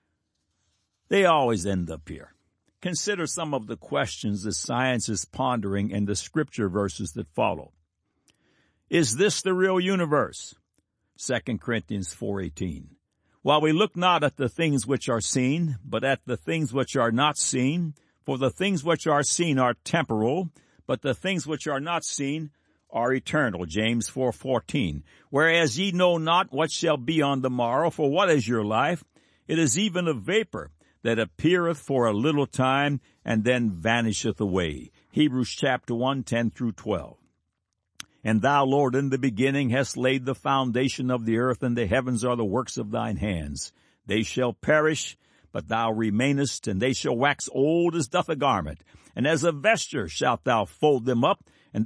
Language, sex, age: English, male, 60-79